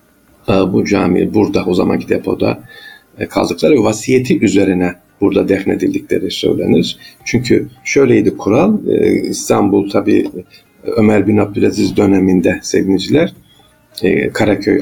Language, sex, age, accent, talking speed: Turkish, male, 50-69, native, 95 wpm